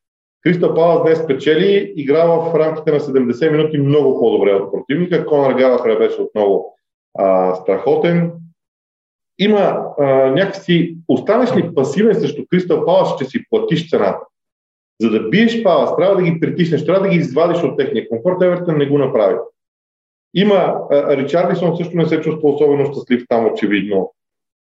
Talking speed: 145 wpm